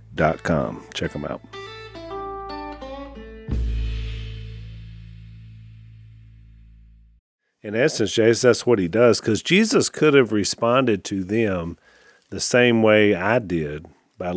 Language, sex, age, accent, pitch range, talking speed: English, male, 40-59, American, 95-115 Hz, 105 wpm